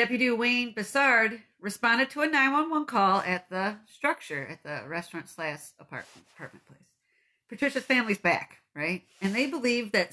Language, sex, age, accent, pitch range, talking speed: English, female, 40-59, American, 195-250 Hz, 155 wpm